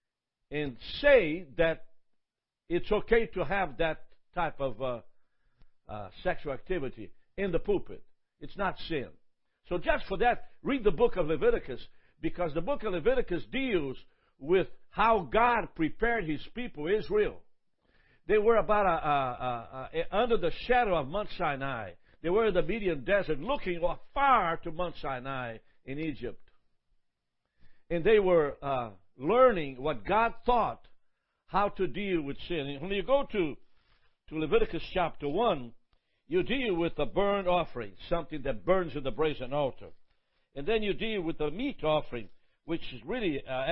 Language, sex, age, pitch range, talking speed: English, male, 60-79, 140-210 Hz, 160 wpm